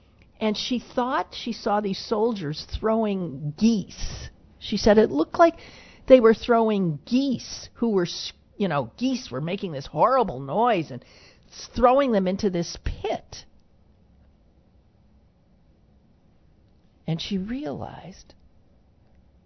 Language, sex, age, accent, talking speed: English, male, 50-69, American, 115 wpm